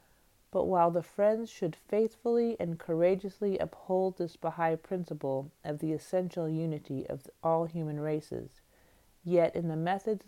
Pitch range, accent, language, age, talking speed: 150-185 Hz, American, English, 40-59, 140 wpm